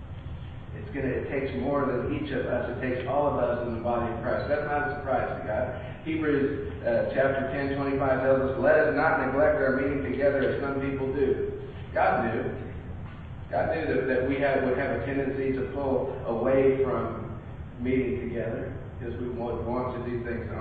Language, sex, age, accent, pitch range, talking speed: English, male, 40-59, American, 120-140 Hz, 200 wpm